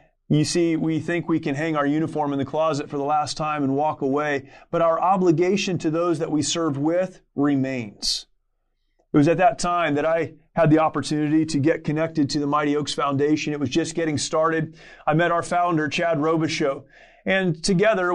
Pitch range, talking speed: 160-190 Hz, 200 wpm